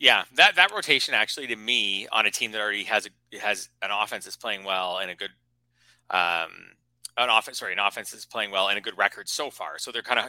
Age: 30-49